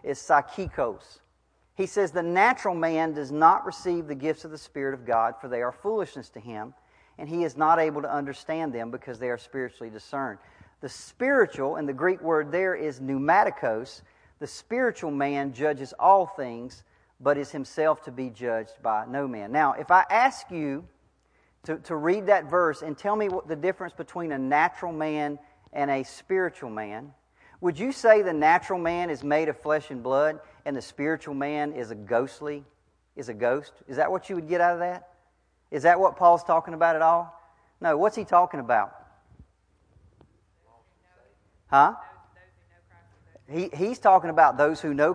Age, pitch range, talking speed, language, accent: 40-59, 125-175 Hz, 180 wpm, English, American